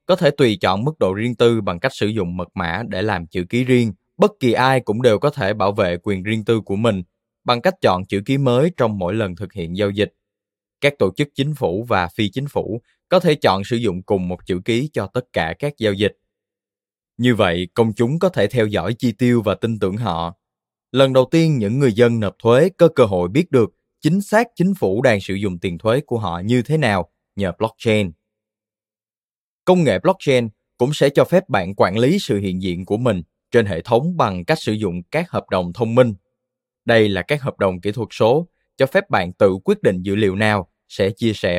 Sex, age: male, 20-39